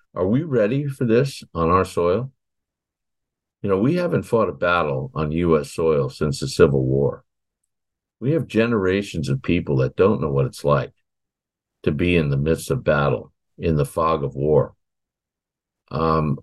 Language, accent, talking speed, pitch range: English, American, 170 wpm, 75-120 Hz